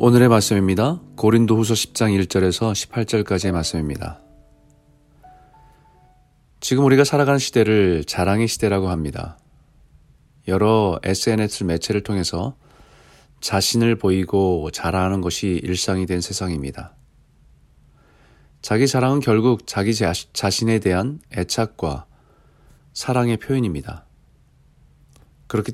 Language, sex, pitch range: Korean, male, 90-120 Hz